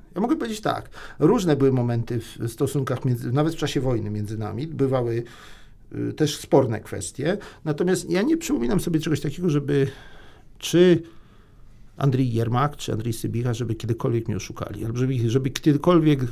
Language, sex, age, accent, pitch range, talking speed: Polish, male, 50-69, native, 115-155 Hz, 155 wpm